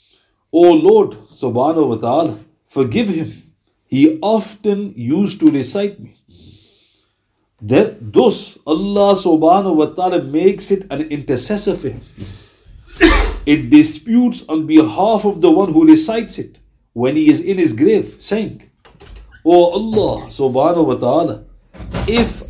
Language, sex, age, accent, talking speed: English, male, 60-79, Indian, 125 wpm